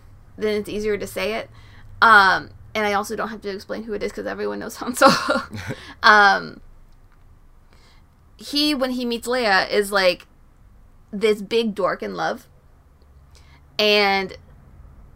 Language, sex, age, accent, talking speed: English, female, 20-39, American, 145 wpm